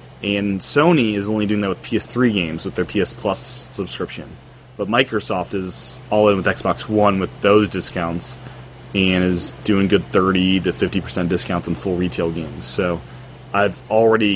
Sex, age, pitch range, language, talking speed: male, 30-49, 95-125 Hz, English, 170 wpm